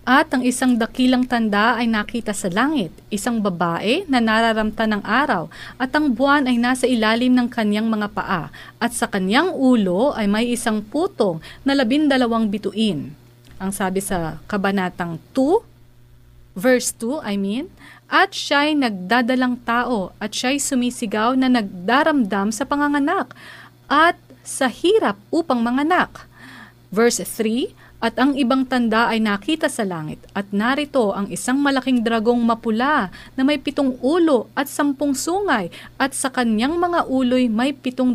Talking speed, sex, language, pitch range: 145 wpm, female, Filipino, 210-275 Hz